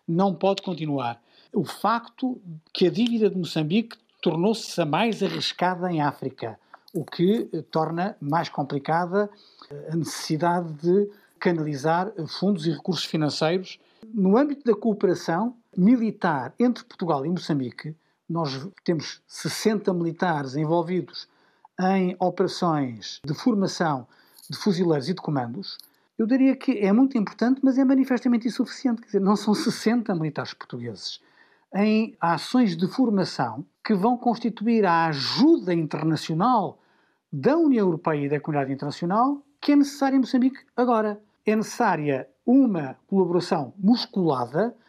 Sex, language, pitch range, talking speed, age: male, Portuguese, 160-230 Hz, 125 wpm, 50-69